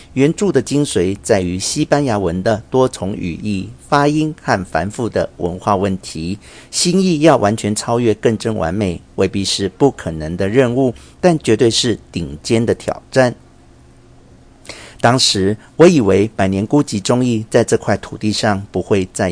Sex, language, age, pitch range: male, Chinese, 50-69, 95-130 Hz